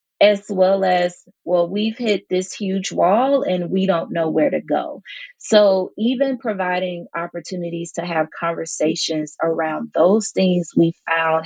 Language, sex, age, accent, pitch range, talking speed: English, female, 30-49, American, 170-210 Hz, 145 wpm